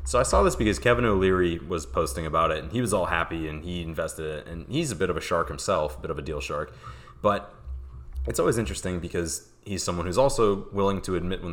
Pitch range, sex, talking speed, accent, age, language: 80-100 Hz, male, 250 wpm, American, 20-39, English